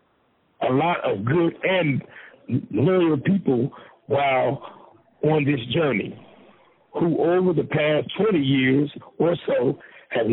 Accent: American